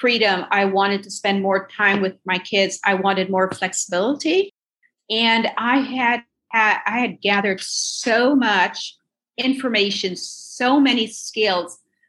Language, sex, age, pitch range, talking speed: English, female, 40-59, 190-230 Hz, 130 wpm